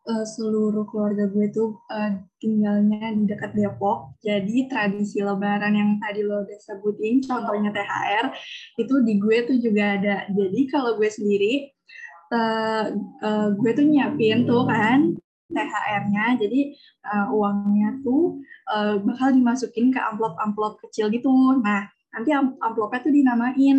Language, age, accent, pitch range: Indonesian, 20-39, native, 210-250 Hz